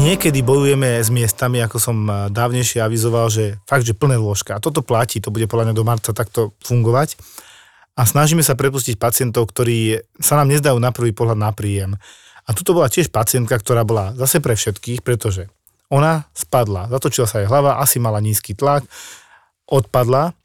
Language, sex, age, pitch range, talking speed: Slovak, male, 40-59, 115-135 Hz, 175 wpm